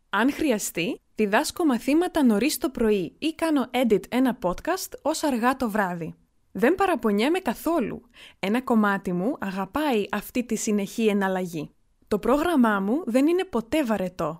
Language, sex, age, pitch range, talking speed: Greek, female, 20-39, 205-275 Hz, 140 wpm